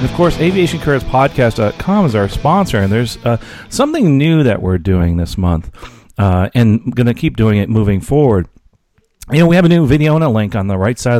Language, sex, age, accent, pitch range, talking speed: English, male, 40-59, American, 100-140 Hz, 215 wpm